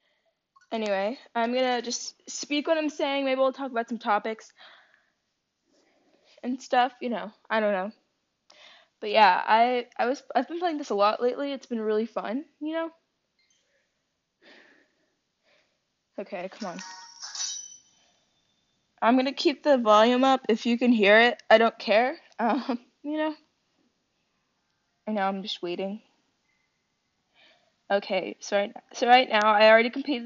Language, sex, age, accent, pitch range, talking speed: English, female, 10-29, American, 215-285 Hz, 145 wpm